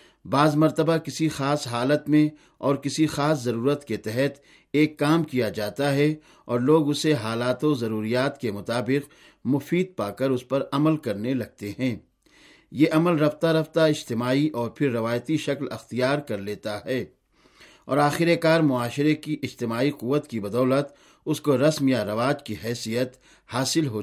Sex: male